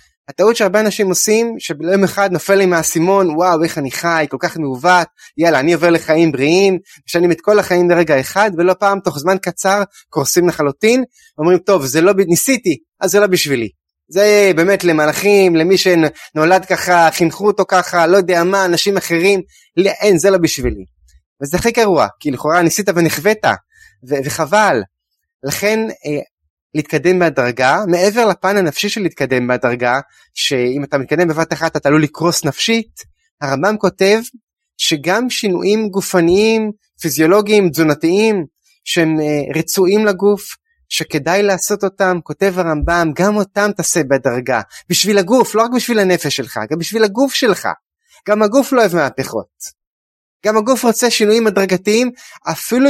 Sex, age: male, 20-39